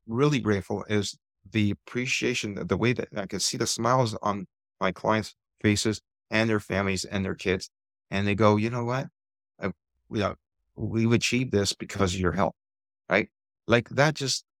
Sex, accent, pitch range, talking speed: male, American, 100-125 Hz, 180 wpm